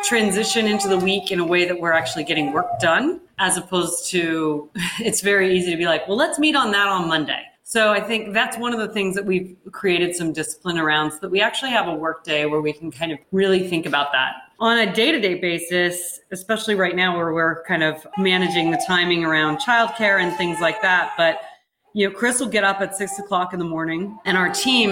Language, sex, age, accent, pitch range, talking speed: English, female, 30-49, American, 165-200 Hz, 230 wpm